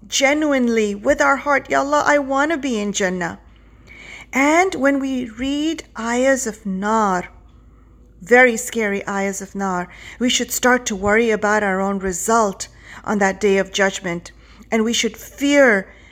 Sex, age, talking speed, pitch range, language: female, 40-59, 155 wpm, 215-270 Hz, English